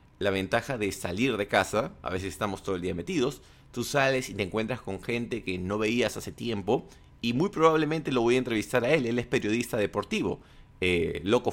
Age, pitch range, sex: 30-49, 100-130 Hz, male